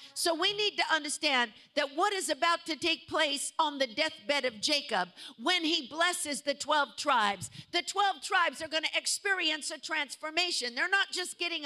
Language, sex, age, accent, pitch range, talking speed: English, female, 50-69, American, 290-360 Hz, 180 wpm